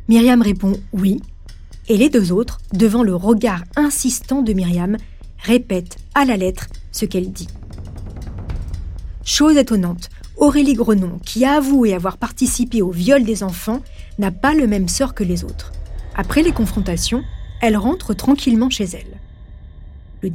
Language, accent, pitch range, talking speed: French, French, 180-250 Hz, 155 wpm